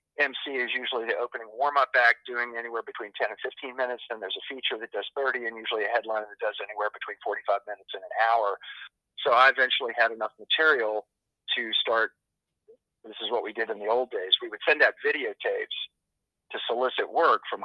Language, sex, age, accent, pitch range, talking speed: English, male, 50-69, American, 115-135 Hz, 205 wpm